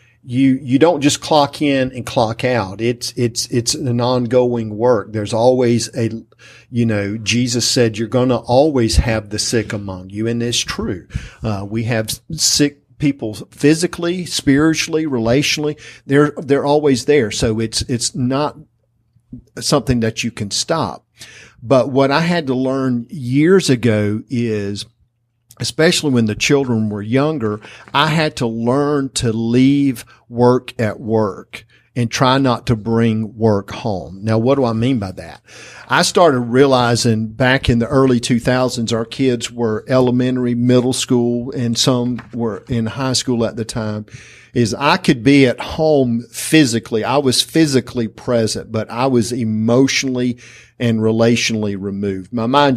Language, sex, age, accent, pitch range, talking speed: English, male, 50-69, American, 115-135 Hz, 155 wpm